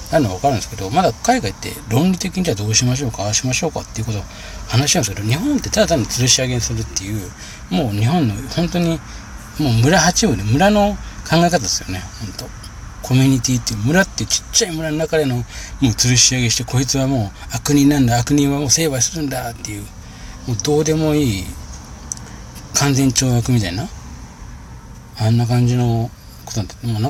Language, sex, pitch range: Japanese, male, 105-150 Hz